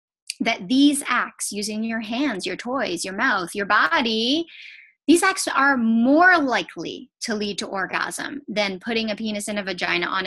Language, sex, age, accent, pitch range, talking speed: English, female, 30-49, American, 200-275 Hz, 170 wpm